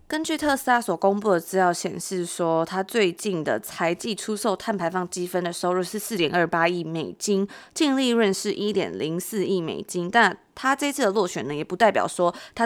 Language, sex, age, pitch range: Chinese, female, 20-39, 175-225 Hz